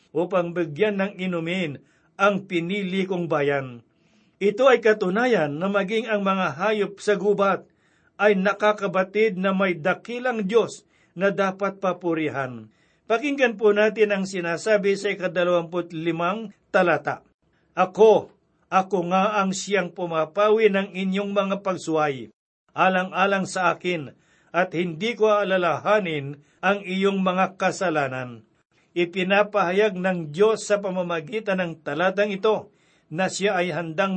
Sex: male